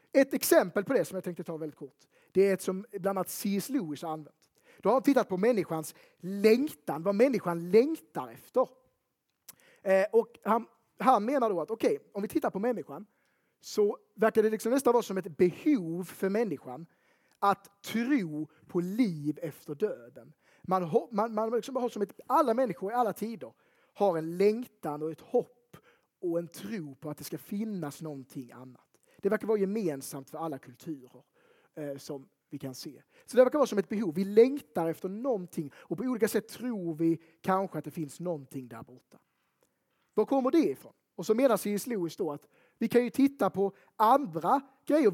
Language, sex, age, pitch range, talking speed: Swedish, male, 30-49, 165-230 Hz, 190 wpm